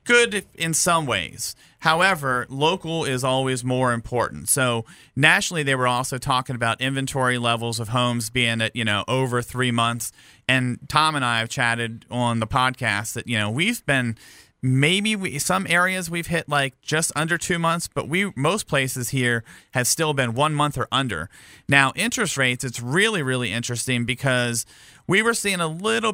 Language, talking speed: English, 180 wpm